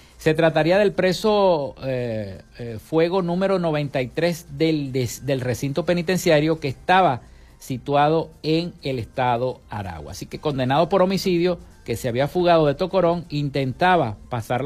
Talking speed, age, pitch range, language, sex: 140 wpm, 50-69, 120-165 Hz, Spanish, male